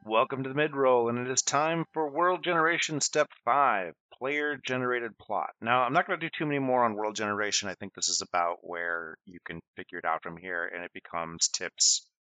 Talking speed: 215 wpm